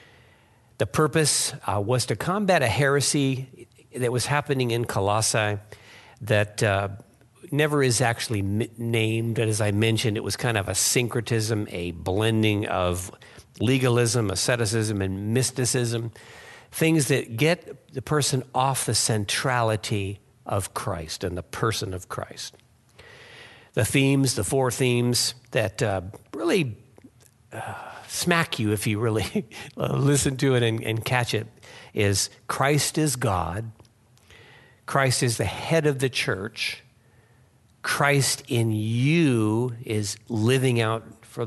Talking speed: 130 wpm